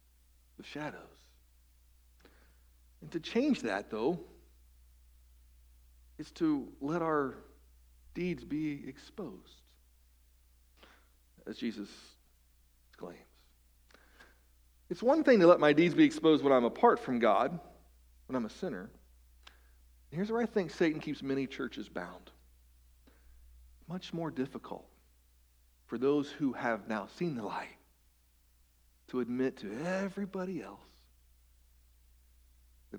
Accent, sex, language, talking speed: American, male, English, 110 wpm